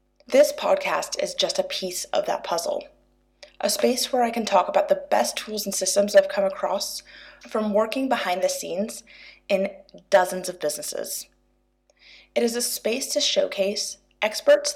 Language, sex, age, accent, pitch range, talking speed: English, female, 20-39, American, 190-275 Hz, 165 wpm